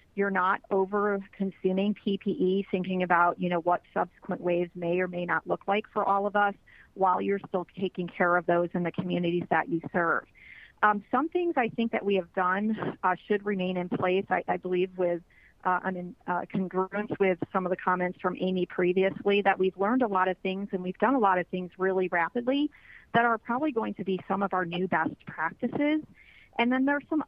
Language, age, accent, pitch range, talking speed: English, 40-59, American, 180-210 Hz, 210 wpm